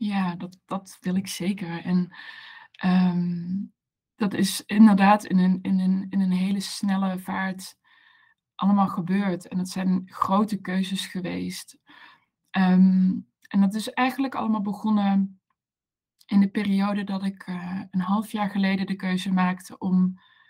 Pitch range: 185-215 Hz